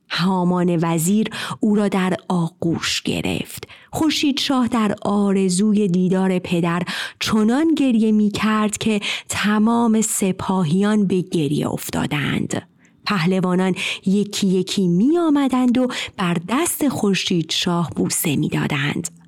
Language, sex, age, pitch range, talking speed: Persian, female, 30-49, 180-240 Hz, 105 wpm